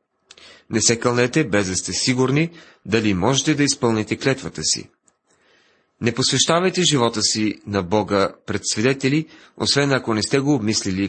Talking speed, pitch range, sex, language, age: 145 wpm, 105-135 Hz, male, Bulgarian, 40-59